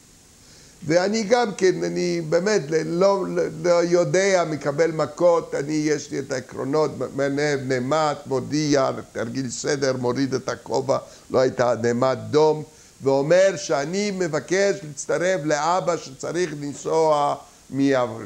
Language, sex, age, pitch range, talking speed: Hebrew, male, 50-69, 125-165 Hz, 110 wpm